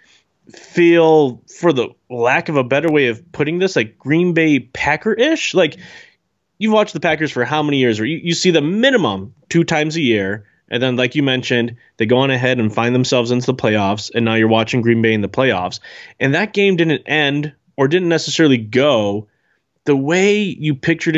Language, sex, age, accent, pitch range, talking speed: English, male, 20-39, American, 115-155 Hz, 205 wpm